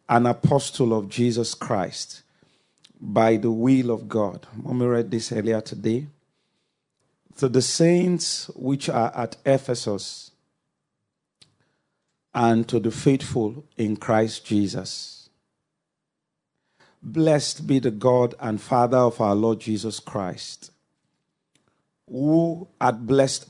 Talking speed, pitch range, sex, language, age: 110 wpm, 115-140 Hz, male, English, 40-59